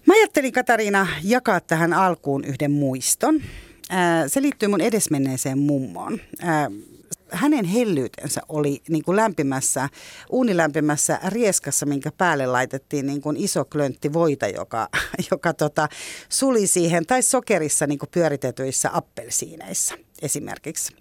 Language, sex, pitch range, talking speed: Finnish, female, 145-200 Hz, 110 wpm